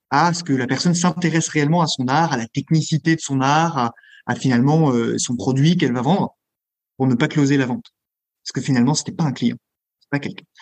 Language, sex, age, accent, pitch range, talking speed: French, male, 20-39, French, 130-160 Hz, 230 wpm